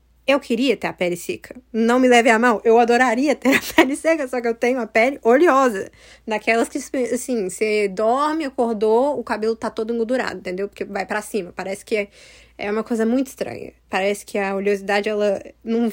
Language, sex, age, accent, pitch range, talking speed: Portuguese, female, 10-29, Brazilian, 205-260 Hz, 200 wpm